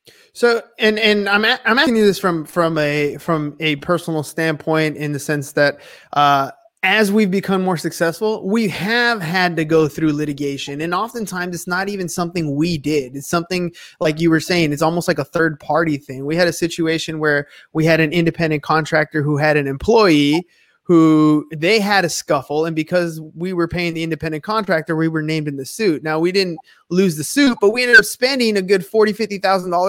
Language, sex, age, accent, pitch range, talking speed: English, male, 20-39, American, 155-195 Hz, 205 wpm